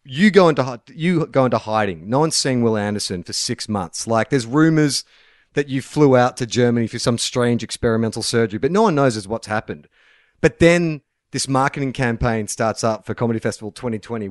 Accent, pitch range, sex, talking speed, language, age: Australian, 110-145 Hz, male, 195 wpm, English, 30-49